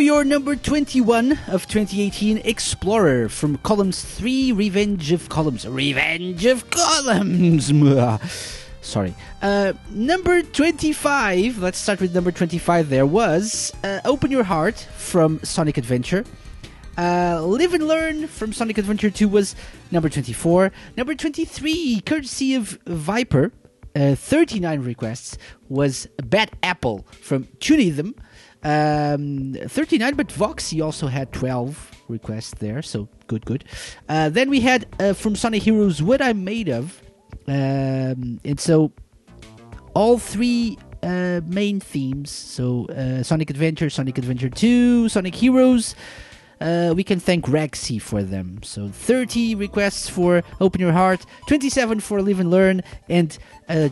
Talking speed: 130 wpm